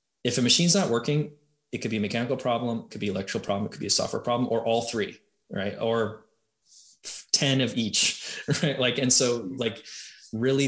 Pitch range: 105-130 Hz